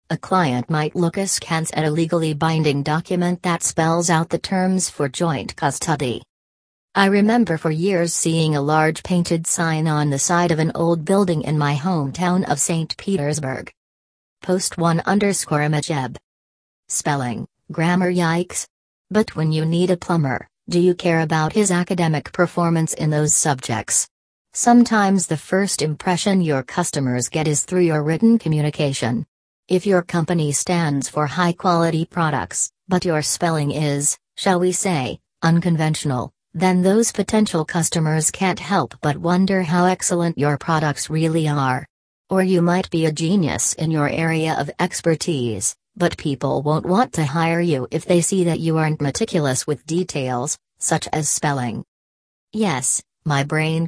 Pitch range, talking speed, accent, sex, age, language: 150-180 Hz, 155 wpm, American, female, 40-59, English